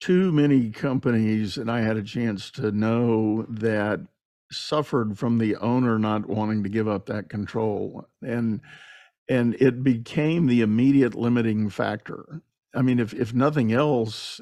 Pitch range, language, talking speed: 110-125 Hz, English, 150 wpm